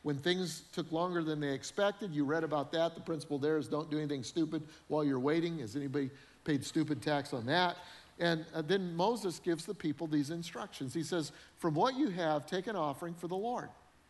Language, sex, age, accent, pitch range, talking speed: English, male, 50-69, American, 150-205 Hz, 210 wpm